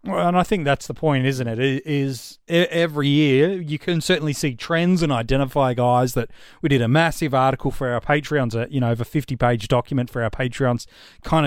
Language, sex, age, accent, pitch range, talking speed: English, male, 30-49, Australian, 125-155 Hz, 210 wpm